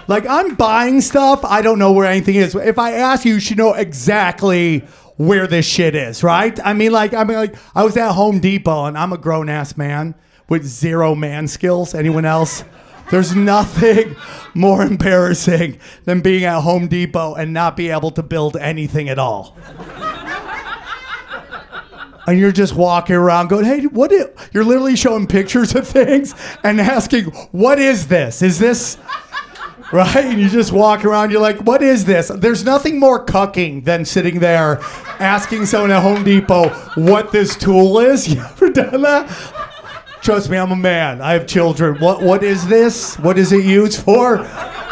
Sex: male